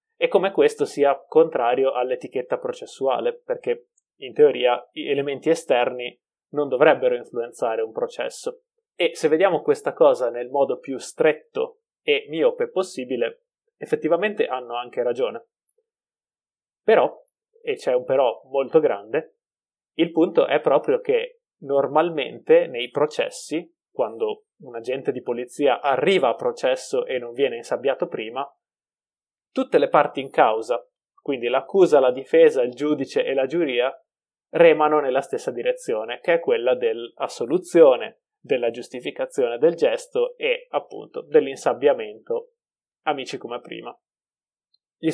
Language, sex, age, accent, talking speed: Italian, male, 20-39, native, 125 wpm